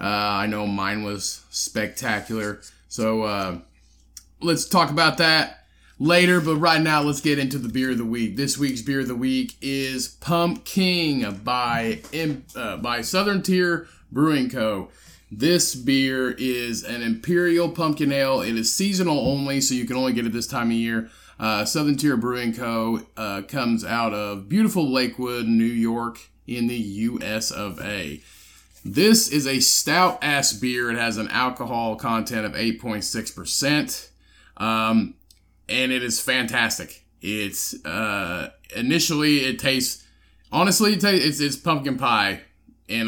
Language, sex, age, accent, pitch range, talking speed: English, male, 30-49, American, 110-150 Hz, 150 wpm